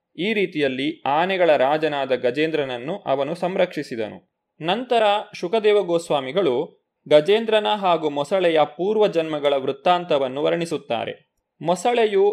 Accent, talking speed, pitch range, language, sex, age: native, 90 wpm, 140-190 Hz, Kannada, male, 20-39